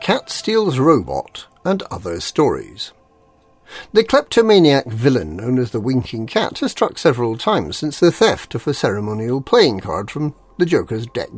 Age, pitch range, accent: 50-69, 120-180 Hz, British